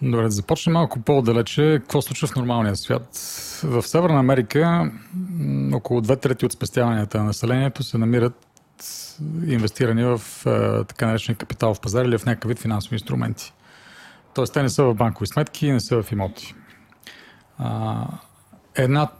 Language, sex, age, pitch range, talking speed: Bulgarian, male, 40-59, 110-135 Hz, 150 wpm